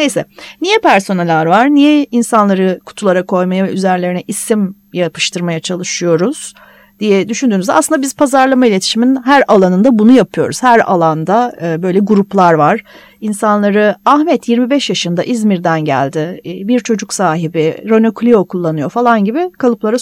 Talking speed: 125 wpm